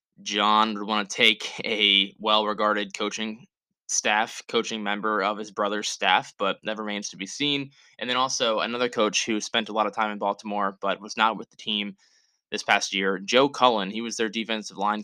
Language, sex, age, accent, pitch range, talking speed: English, male, 10-29, American, 105-120 Hz, 200 wpm